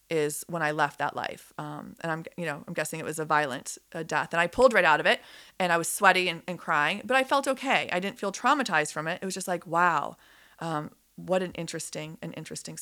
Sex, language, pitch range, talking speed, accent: female, English, 160-195 Hz, 255 wpm, American